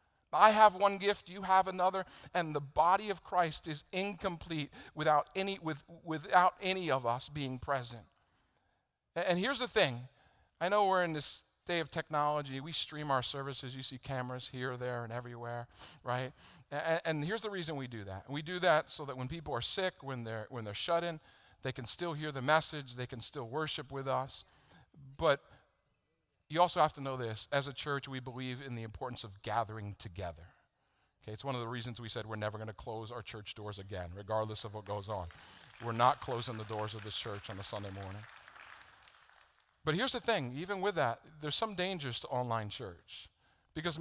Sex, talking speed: male, 200 wpm